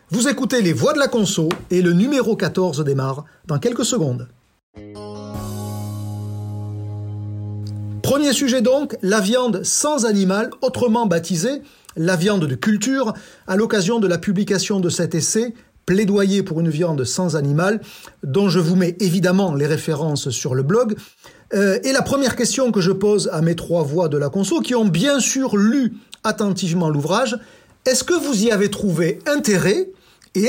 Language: French